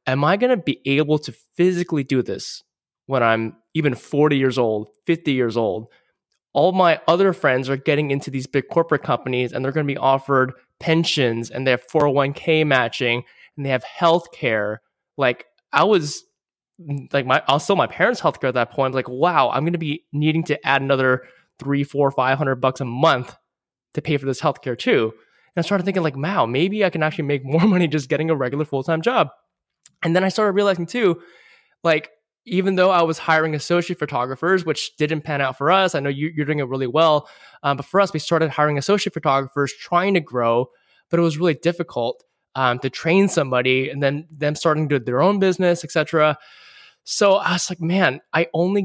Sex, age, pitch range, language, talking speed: male, 20-39, 130-170 Hz, English, 205 wpm